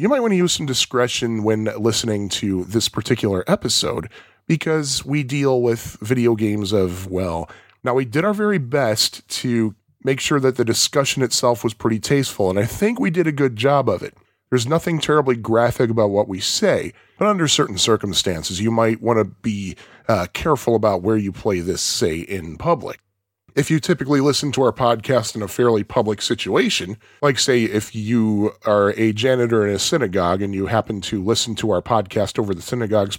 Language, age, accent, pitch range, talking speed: English, 10-29, American, 105-145 Hz, 195 wpm